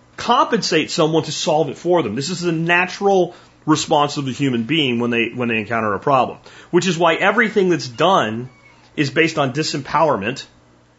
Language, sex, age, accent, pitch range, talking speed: English, male, 30-49, American, 120-170 Hz, 180 wpm